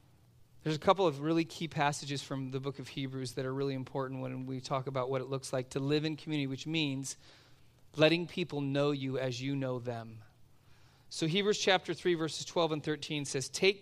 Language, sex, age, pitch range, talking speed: English, male, 40-59, 130-160 Hz, 210 wpm